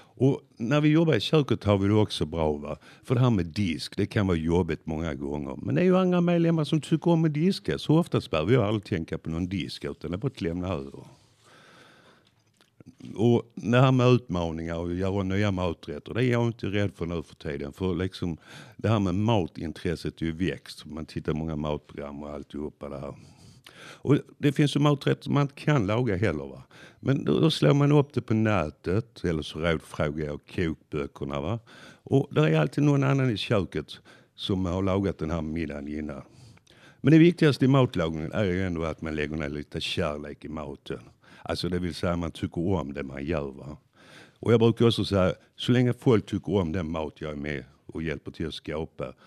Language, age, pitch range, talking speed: Swedish, 60-79, 80-125 Hz, 210 wpm